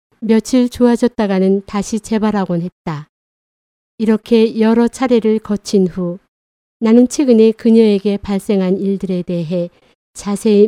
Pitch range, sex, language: 190-235 Hz, female, Korean